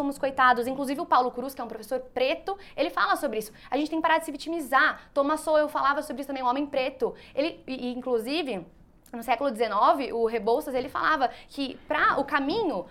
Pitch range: 235-310 Hz